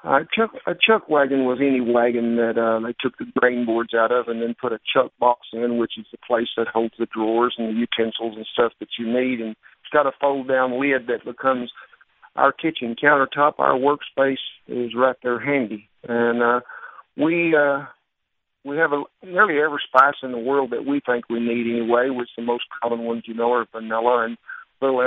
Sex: male